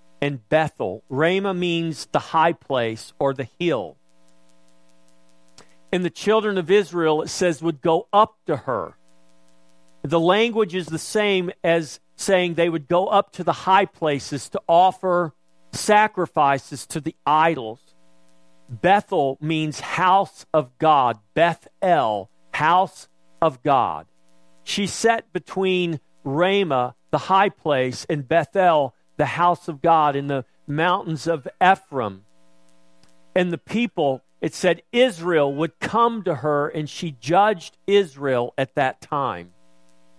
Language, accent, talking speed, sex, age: English, American, 130 wpm, male, 50-69